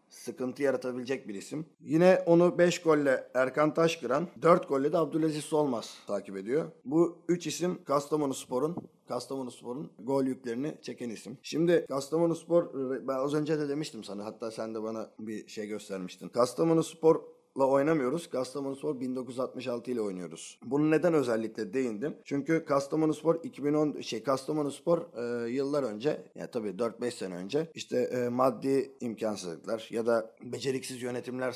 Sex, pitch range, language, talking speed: male, 120-160 Hz, Turkish, 155 wpm